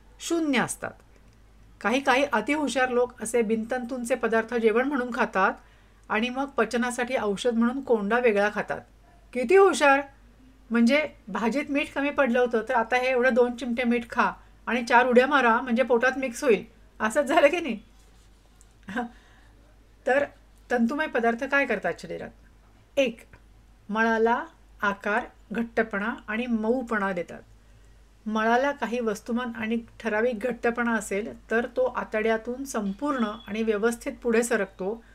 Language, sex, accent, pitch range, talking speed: Marathi, female, native, 200-255 Hz, 130 wpm